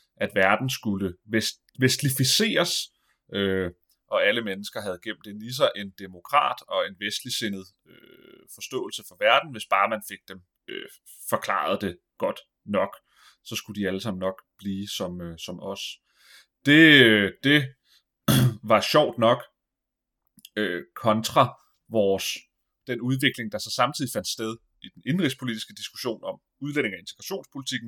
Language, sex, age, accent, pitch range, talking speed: Danish, male, 30-49, native, 105-135 Hz, 125 wpm